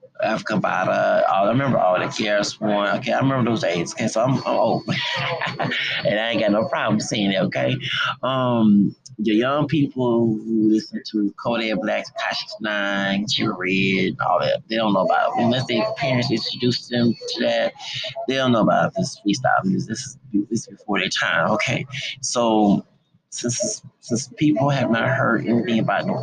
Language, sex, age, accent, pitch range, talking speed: English, male, 30-49, American, 105-135 Hz, 180 wpm